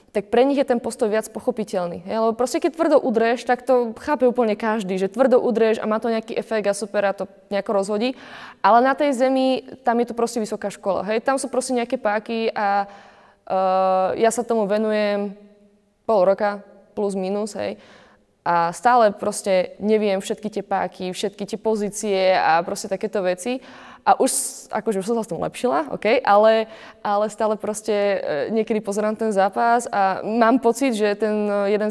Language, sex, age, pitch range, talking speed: Slovak, female, 20-39, 200-235 Hz, 185 wpm